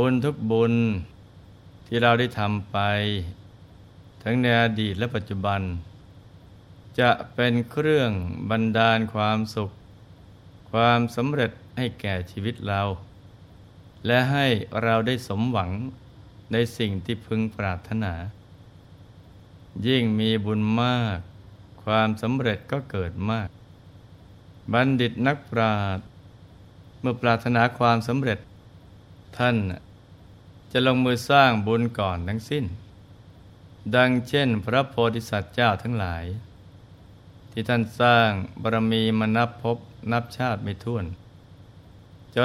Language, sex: Thai, male